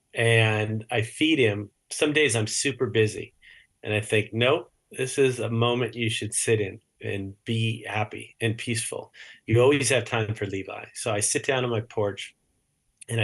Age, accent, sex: 30-49, American, male